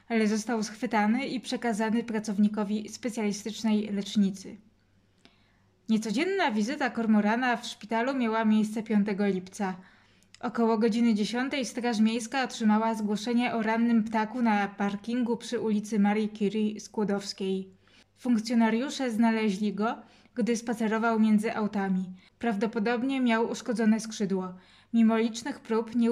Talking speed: 110 wpm